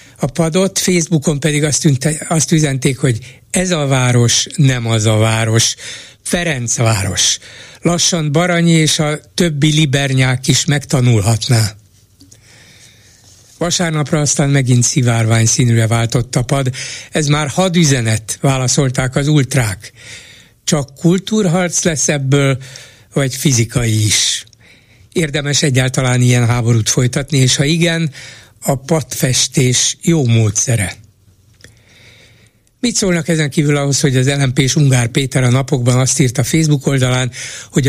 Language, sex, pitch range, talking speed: Hungarian, male, 120-155 Hz, 120 wpm